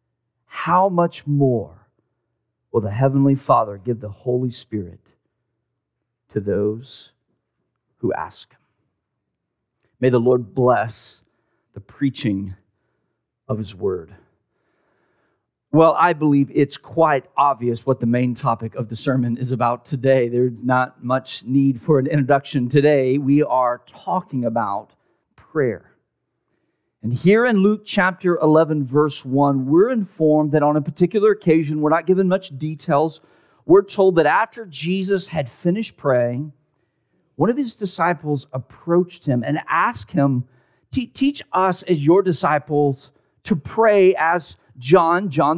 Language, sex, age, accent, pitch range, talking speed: English, male, 40-59, American, 125-175 Hz, 130 wpm